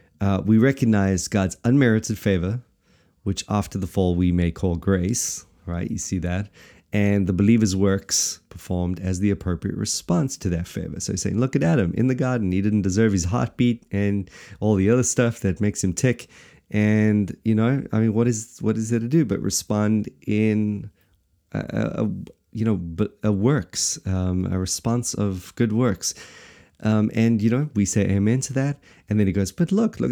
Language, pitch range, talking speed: English, 95-120 Hz, 195 wpm